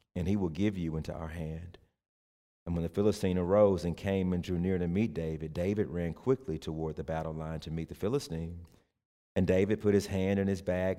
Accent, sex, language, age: American, male, English, 40-59